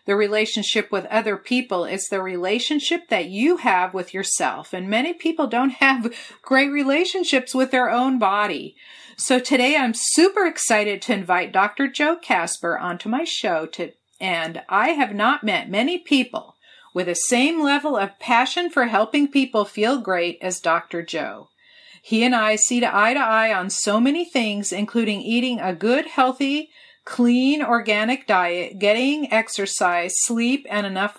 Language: English